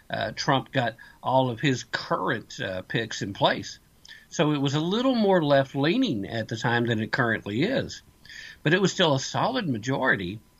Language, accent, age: English, American, 50-69